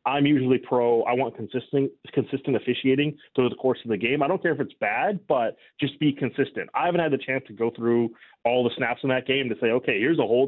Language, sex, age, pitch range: English, male, 30-49, 120-150 Hz